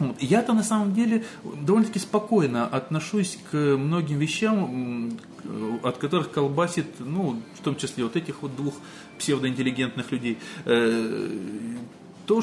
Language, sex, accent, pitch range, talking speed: Russian, male, native, 120-180 Hz, 115 wpm